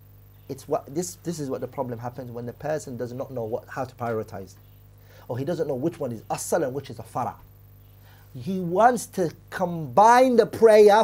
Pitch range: 105-140 Hz